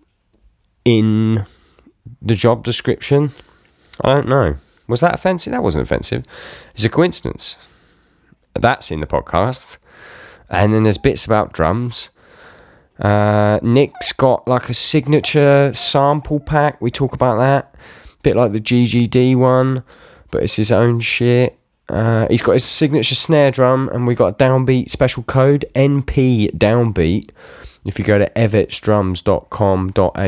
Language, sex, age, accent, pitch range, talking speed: English, male, 20-39, British, 95-130 Hz, 135 wpm